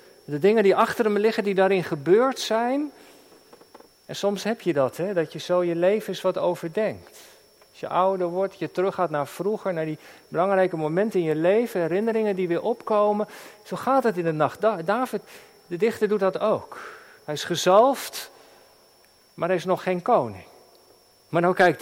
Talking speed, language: 180 wpm, Dutch